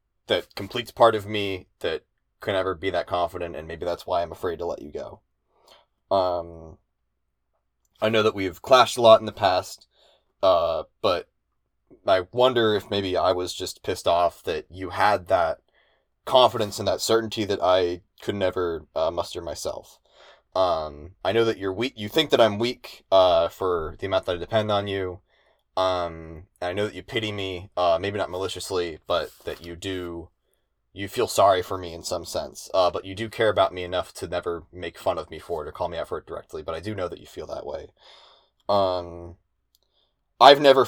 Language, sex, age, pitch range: English, male, 20-39, 90-110 Hz